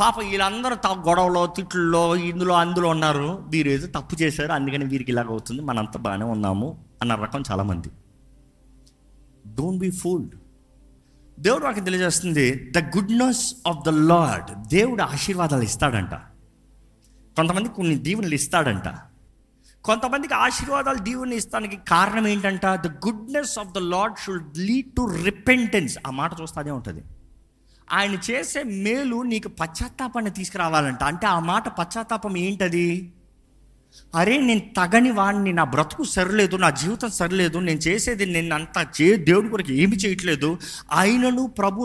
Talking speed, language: 130 wpm, Telugu